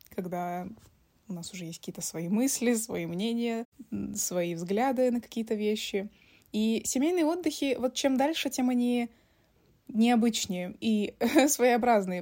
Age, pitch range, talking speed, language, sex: 20-39, 185-230 Hz, 130 wpm, Russian, female